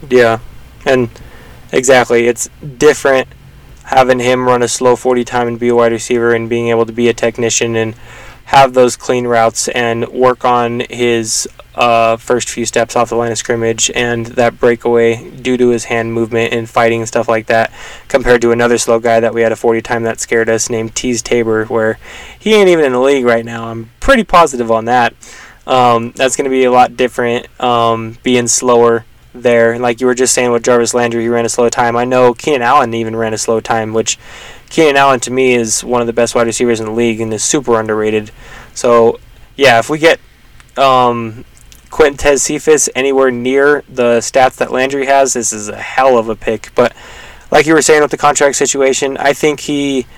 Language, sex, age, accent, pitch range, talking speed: English, male, 10-29, American, 115-130 Hz, 210 wpm